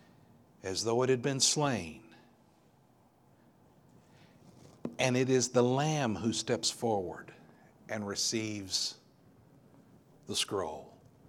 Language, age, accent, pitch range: English, 60-79, American, 100-135 Hz